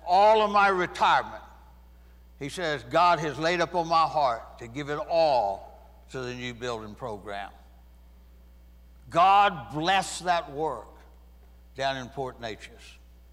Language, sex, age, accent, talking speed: English, male, 60-79, American, 135 wpm